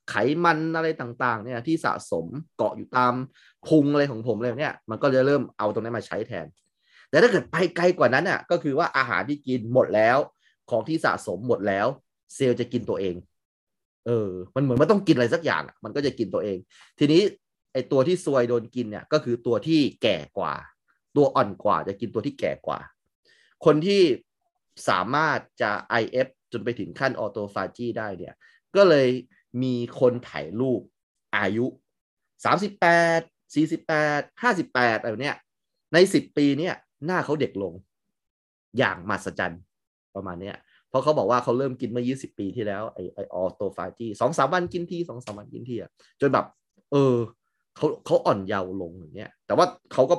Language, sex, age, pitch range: Thai, male, 20-39, 100-160 Hz